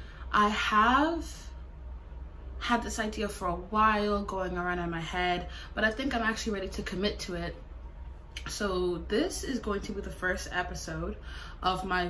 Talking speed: 170 wpm